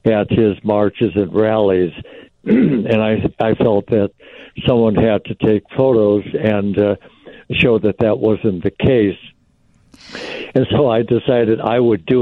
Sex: male